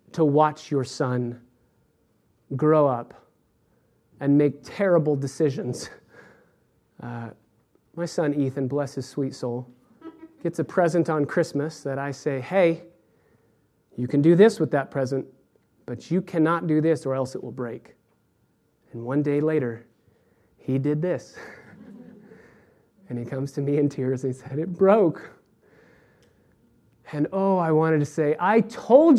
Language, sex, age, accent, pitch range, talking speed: English, male, 30-49, American, 140-205 Hz, 145 wpm